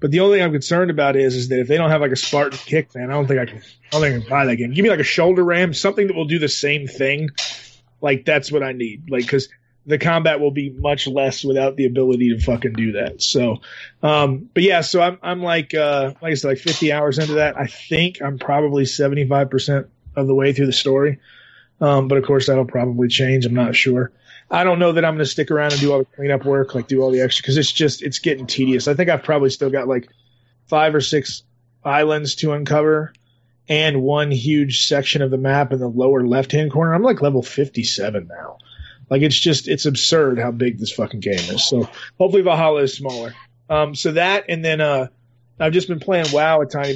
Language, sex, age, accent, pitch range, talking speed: English, male, 30-49, American, 130-150 Hz, 240 wpm